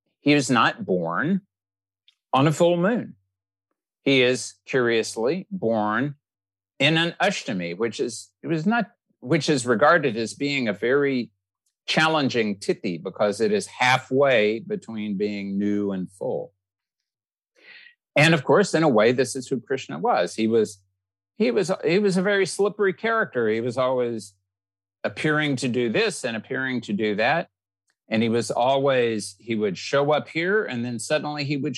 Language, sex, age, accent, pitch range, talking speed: English, male, 50-69, American, 100-145 Hz, 160 wpm